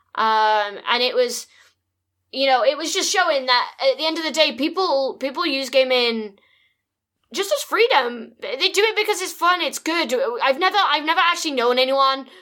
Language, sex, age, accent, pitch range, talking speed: English, female, 10-29, British, 250-320 Hz, 190 wpm